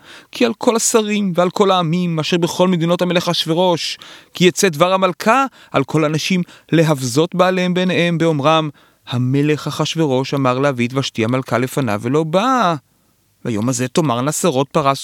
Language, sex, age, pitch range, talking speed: Hebrew, male, 30-49, 110-170 Hz, 150 wpm